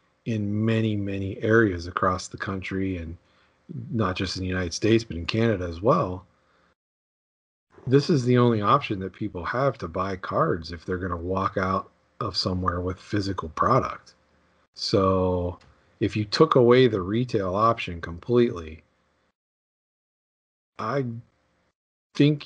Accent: American